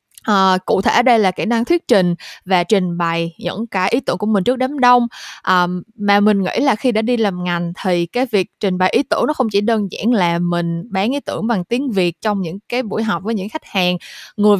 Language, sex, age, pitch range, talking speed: Vietnamese, female, 20-39, 185-250 Hz, 255 wpm